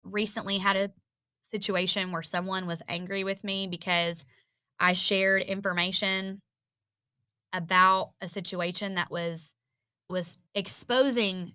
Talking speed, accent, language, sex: 110 wpm, American, English, female